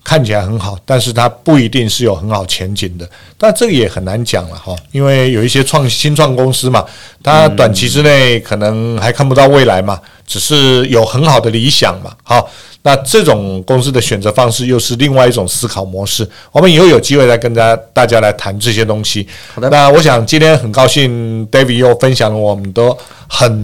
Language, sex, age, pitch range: Chinese, male, 50-69, 110-135 Hz